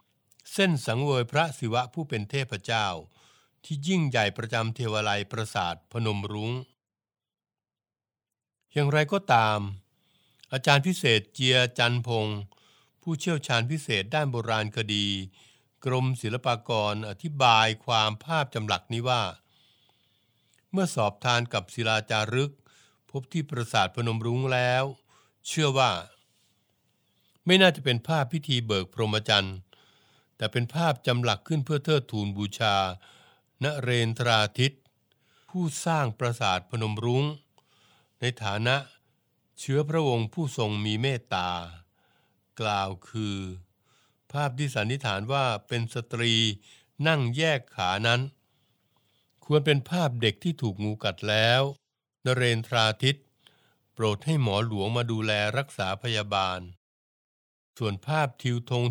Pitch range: 105-140 Hz